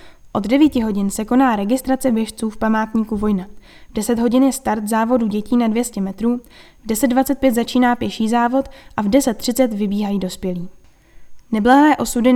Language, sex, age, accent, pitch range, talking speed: Czech, female, 10-29, native, 215-255 Hz, 155 wpm